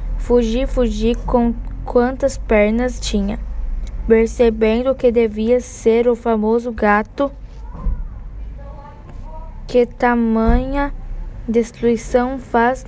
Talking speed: 80 wpm